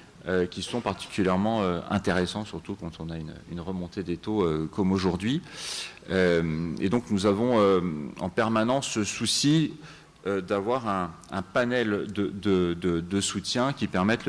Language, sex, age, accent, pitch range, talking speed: French, male, 40-59, French, 90-105 Hz, 155 wpm